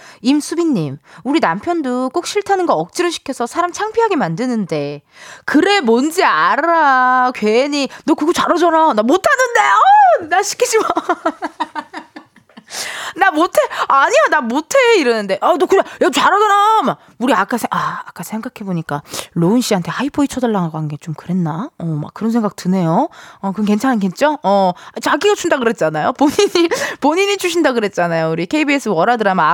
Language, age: Korean, 20-39